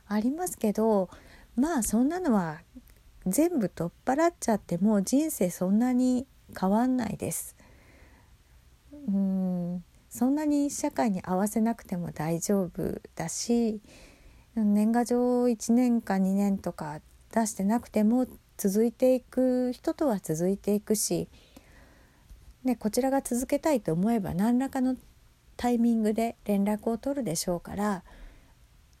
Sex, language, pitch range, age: female, Japanese, 180-240 Hz, 50-69